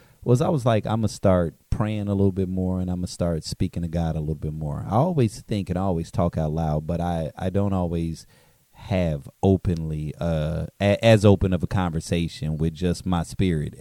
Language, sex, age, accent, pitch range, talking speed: English, male, 30-49, American, 85-110 Hz, 225 wpm